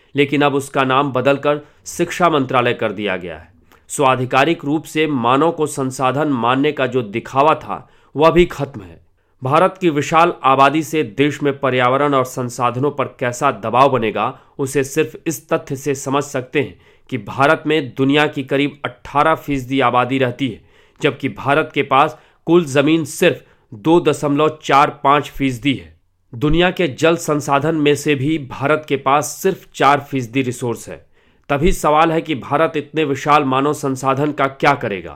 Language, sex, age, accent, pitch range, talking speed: English, male, 40-59, Indian, 130-155 Hz, 145 wpm